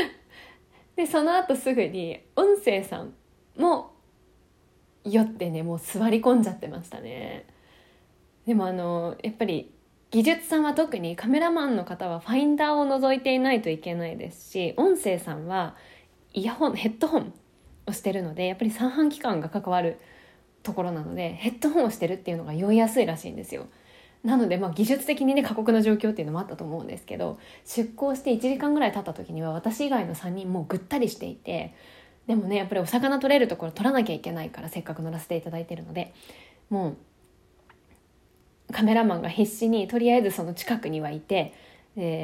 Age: 20-39